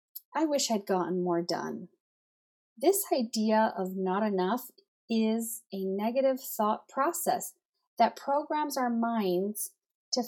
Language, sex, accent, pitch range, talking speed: English, female, American, 185-245 Hz, 125 wpm